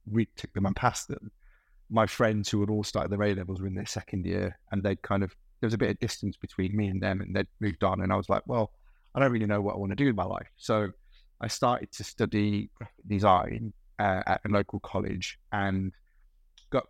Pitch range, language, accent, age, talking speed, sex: 95-105 Hz, English, British, 30-49, 240 wpm, male